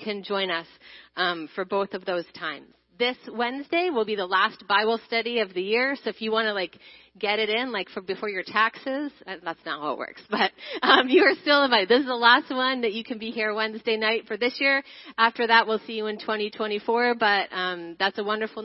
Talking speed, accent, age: 230 wpm, American, 30-49